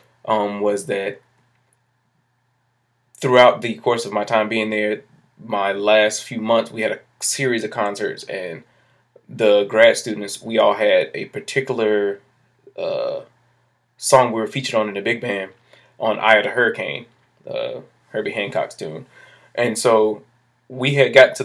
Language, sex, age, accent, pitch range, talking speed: English, male, 20-39, American, 105-135 Hz, 155 wpm